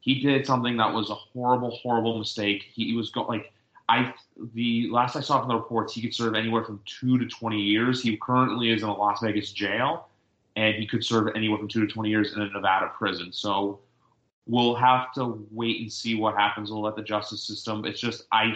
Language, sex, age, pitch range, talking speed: English, male, 30-49, 105-115 Hz, 220 wpm